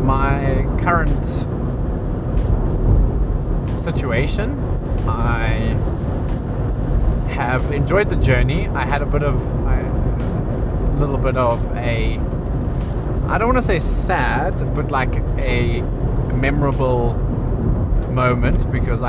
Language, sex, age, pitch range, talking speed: English, male, 30-49, 115-130 Hz, 95 wpm